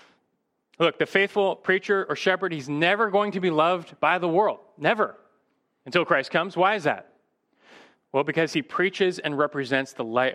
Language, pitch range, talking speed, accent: English, 135-190 Hz, 175 wpm, American